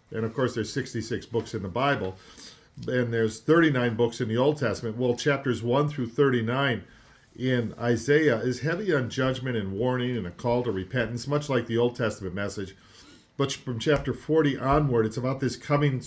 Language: English